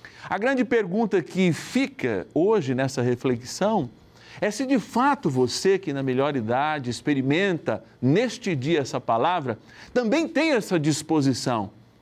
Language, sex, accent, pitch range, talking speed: Portuguese, male, Brazilian, 120-170 Hz, 130 wpm